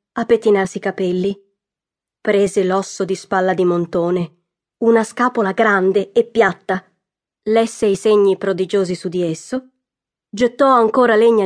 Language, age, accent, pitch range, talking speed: Italian, 20-39, native, 195-230 Hz, 130 wpm